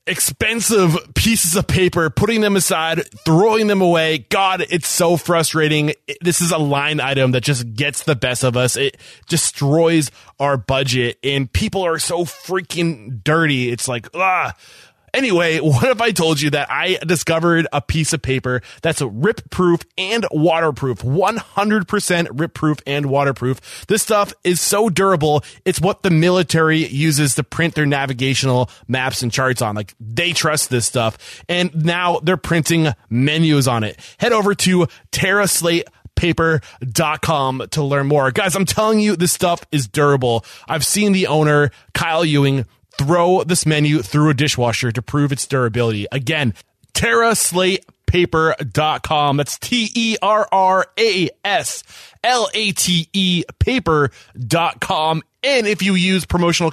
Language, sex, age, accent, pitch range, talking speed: English, male, 20-39, American, 135-180 Hz, 140 wpm